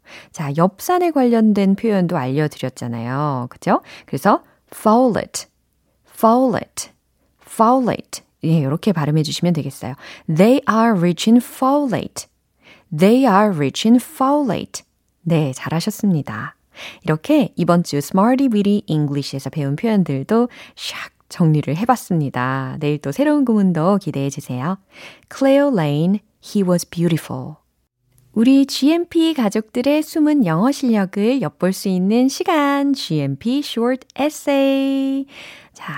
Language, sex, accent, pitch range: Korean, female, native, 150-250 Hz